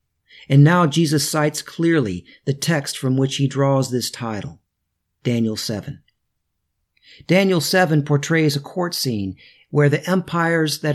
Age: 50-69